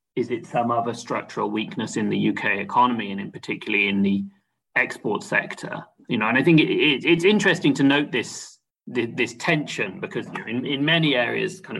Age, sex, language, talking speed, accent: 30-49, male, English, 195 wpm, British